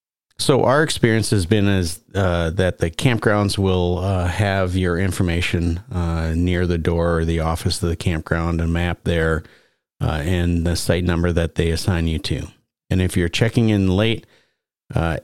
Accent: American